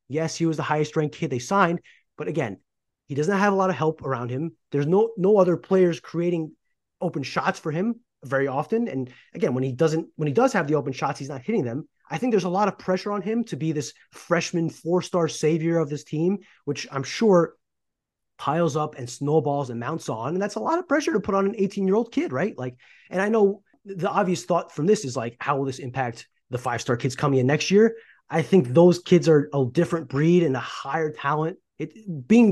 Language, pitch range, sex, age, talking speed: English, 140-190 Hz, male, 30-49, 230 wpm